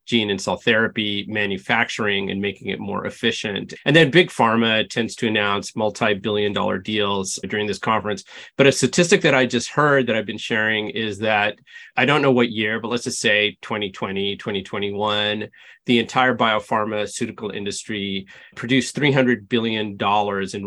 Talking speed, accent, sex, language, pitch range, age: 160 wpm, American, male, English, 105-125 Hz, 30-49